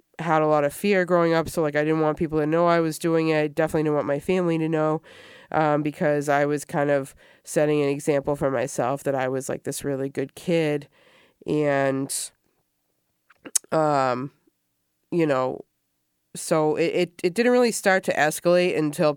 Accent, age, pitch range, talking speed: American, 20-39, 145-160 Hz, 190 wpm